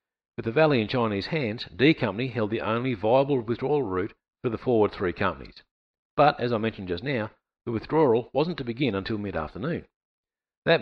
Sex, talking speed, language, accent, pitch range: male, 185 wpm, English, Australian, 100-130 Hz